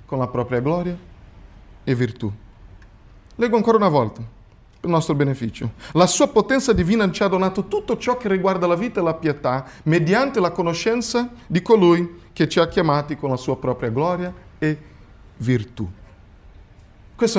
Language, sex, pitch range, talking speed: Italian, male, 115-180 Hz, 160 wpm